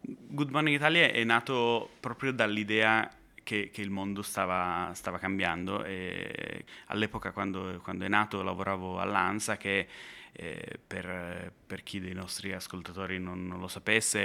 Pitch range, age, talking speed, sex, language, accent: 95-110 Hz, 20-39, 145 wpm, male, Italian, native